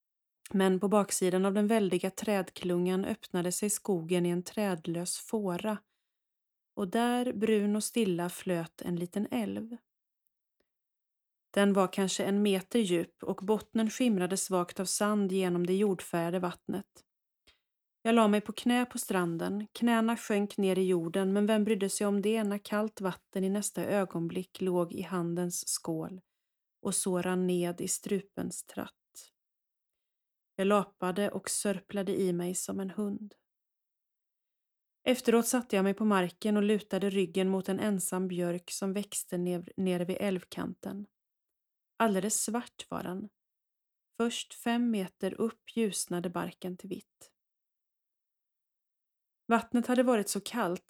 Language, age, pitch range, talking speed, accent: Swedish, 30-49, 185-215 Hz, 140 wpm, native